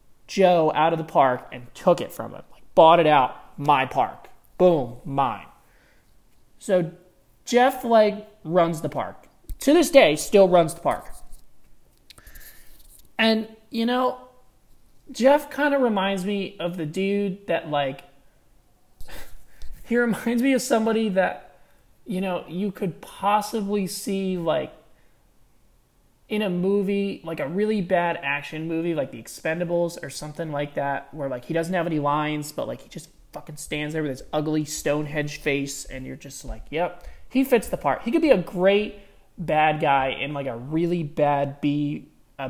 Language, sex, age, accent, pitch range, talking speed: English, male, 20-39, American, 150-200 Hz, 160 wpm